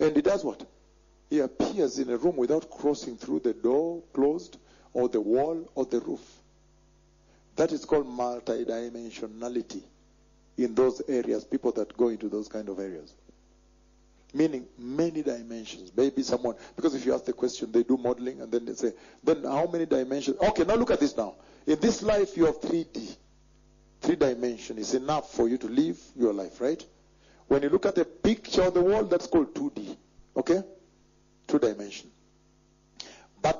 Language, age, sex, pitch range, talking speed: English, 50-69, male, 125-190 Hz, 175 wpm